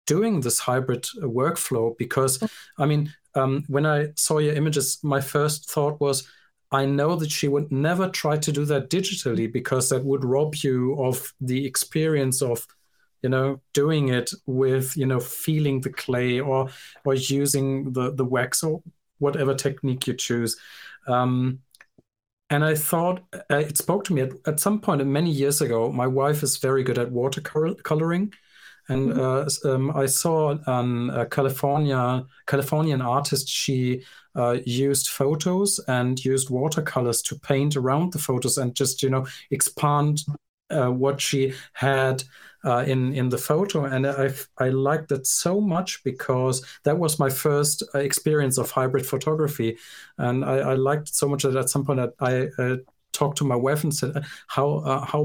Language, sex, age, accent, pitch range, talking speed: English, male, 40-59, German, 130-150 Hz, 170 wpm